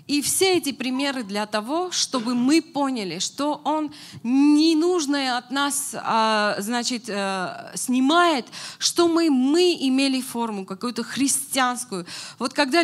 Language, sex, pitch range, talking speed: Russian, female, 190-270 Hz, 110 wpm